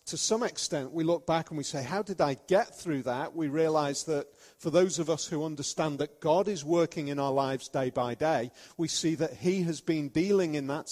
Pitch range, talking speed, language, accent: 140-185 Hz, 235 wpm, English, British